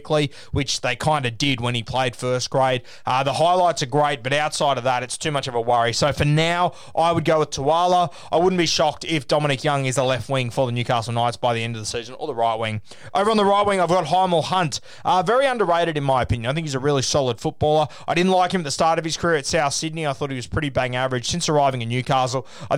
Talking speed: 280 wpm